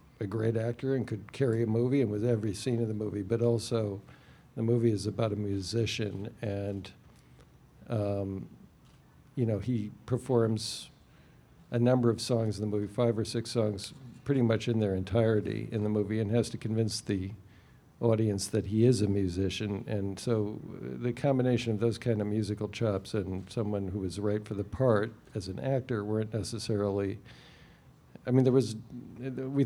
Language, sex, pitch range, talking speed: English, male, 105-130 Hz, 175 wpm